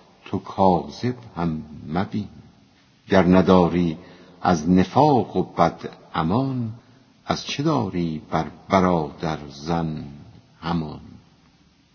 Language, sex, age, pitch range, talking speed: Persian, female, 70-89, 85-105 Hz, 90 wpm